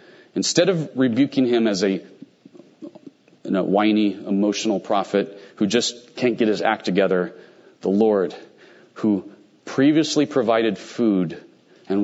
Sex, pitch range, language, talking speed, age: male, 100-125 Hz, English, 115 wpm, 40-59